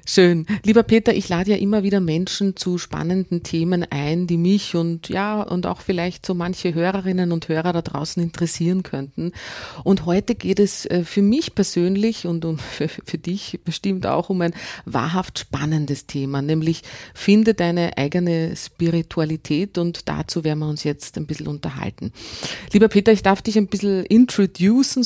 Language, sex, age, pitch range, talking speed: German, female, 30-49, 165-200 Hz, 165 wpm